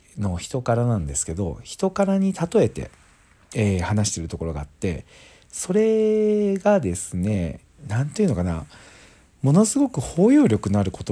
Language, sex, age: Japanese, male, 50-69